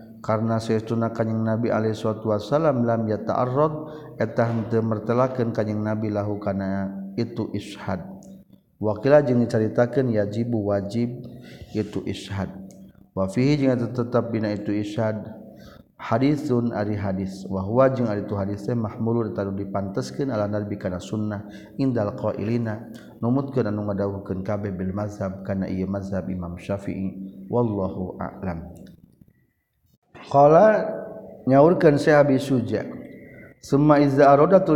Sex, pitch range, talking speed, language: male, 100-125 Hz, 125 wpm, Indonesian